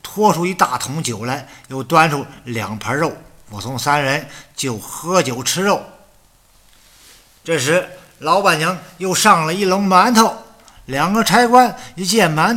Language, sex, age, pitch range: Chinese, male, 50-69, 140-195 Hz